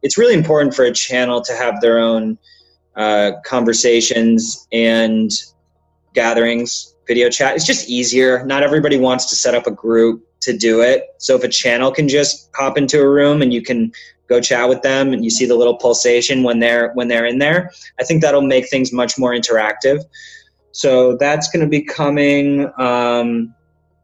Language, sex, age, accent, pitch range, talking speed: English, male, 20-39, American, 110-135 Hz, 180 wpm